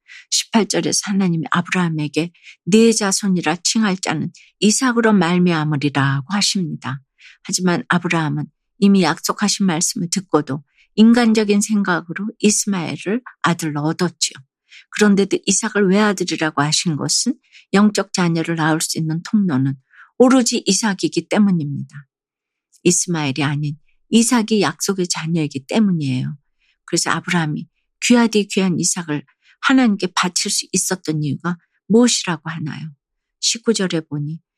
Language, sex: Korean, female